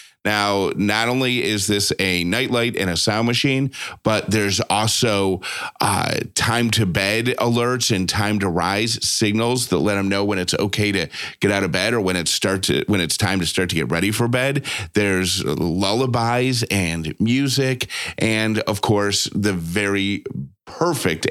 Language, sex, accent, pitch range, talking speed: English, male, American, 95-115 Hz, 170 wpm